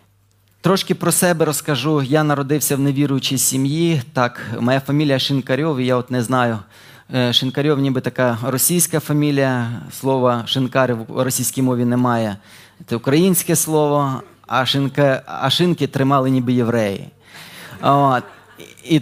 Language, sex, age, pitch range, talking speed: Ukrainian, male, 20-39, 125-160 Hz, 130 wpm